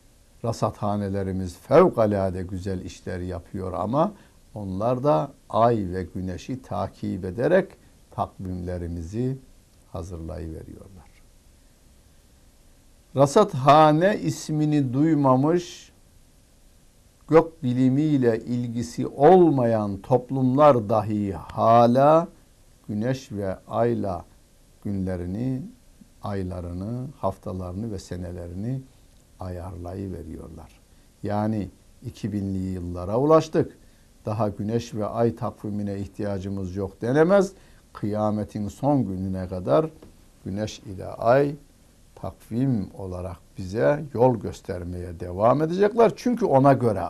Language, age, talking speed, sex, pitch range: Turkish, 60-79, 80 wpm, male, 95-130 Hz